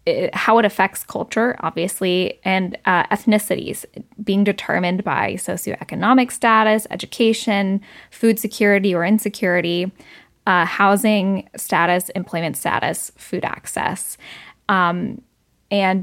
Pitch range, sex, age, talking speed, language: 185-225 Hz, female, 10-29, 105 wpm, English